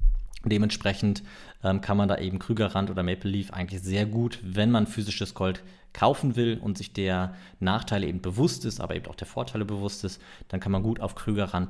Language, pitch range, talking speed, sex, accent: German, 100-120 Hz, 200 wpm, male, German